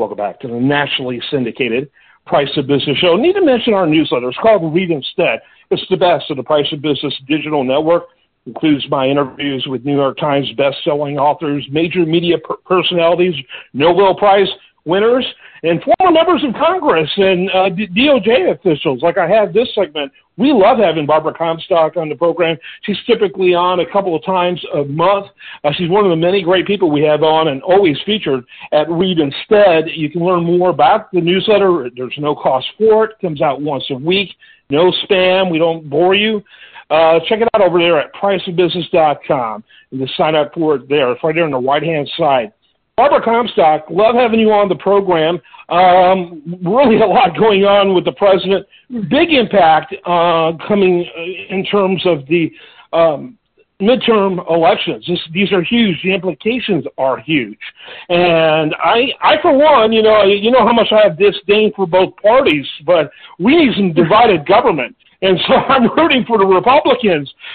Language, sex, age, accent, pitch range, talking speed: English, male, 50-69, American, 160-210 Hz, 180 wpm